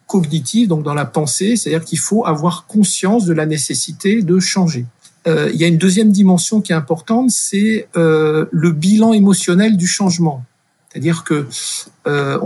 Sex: male